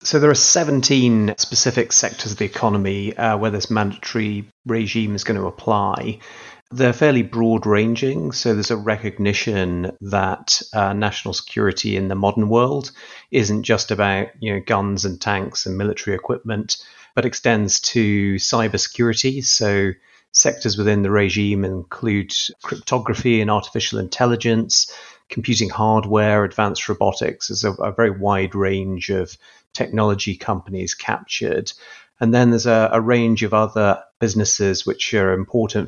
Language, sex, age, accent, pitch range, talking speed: English, male, 30-49, British, 100-115 Hz, 145 wpm